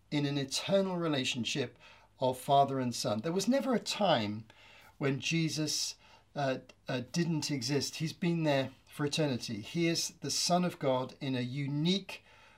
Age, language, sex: 50-69, English, male